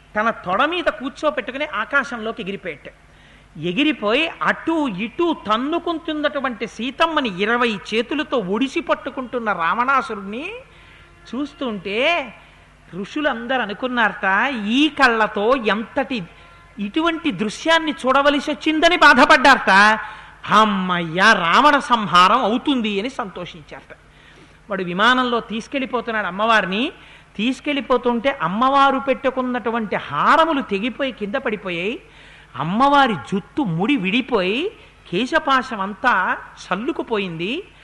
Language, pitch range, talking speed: Telugu, 210-280 Hz, 80 wpm